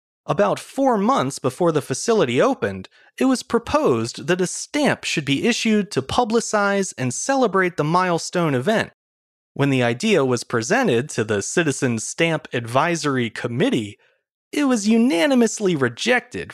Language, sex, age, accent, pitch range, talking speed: English, male, 30-49, American, 135-225 Hz, 140 wpm